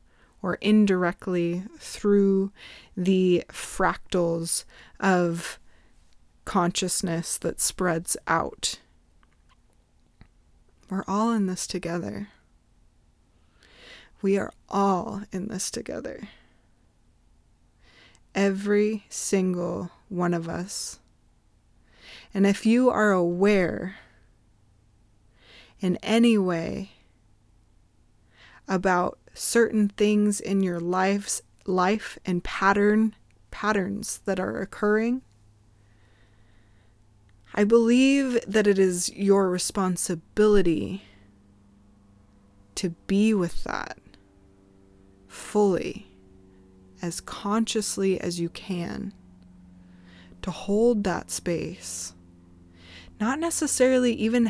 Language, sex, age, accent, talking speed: English, female, 20-39, American, 80 wpm